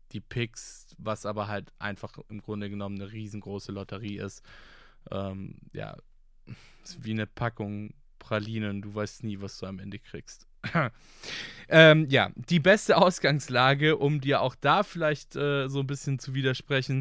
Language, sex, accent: German, male, German